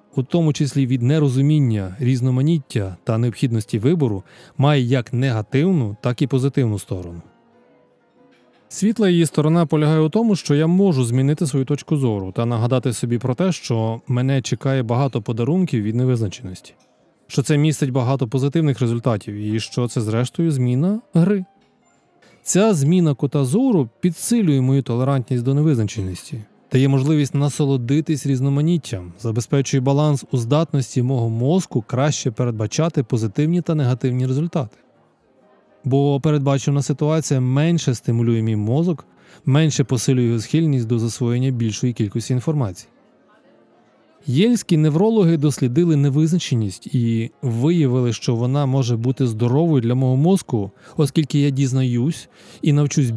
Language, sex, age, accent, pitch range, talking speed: Ukrainian, male, 20-39, native, 120-155 Hz, 130 wpm